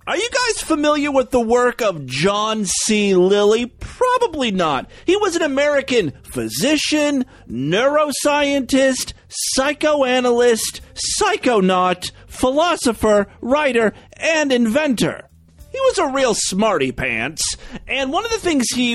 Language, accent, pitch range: English, American, 185-295 Hz